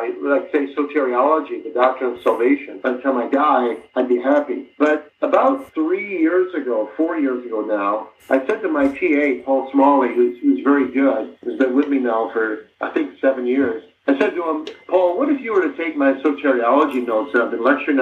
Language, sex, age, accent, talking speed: English, male, 50-69, American, 215 wpm